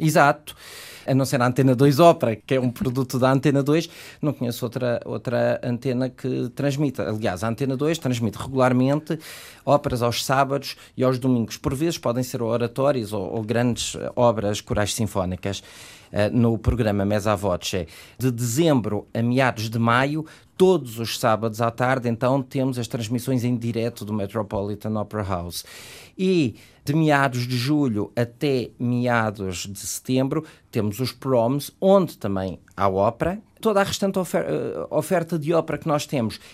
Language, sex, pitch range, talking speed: Portuguese, male, 115-145 Hz, 155 wpm